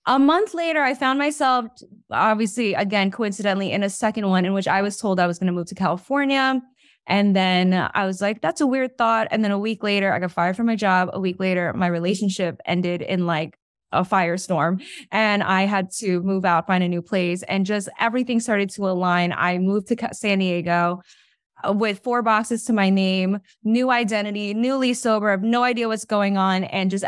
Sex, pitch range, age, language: female, 180-220 Hz, 20-39, English